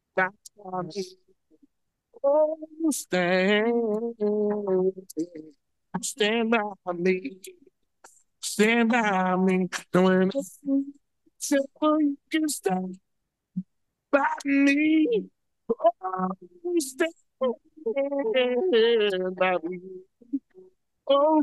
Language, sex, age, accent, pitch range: English, male, 50-69, American, 185-295 Hz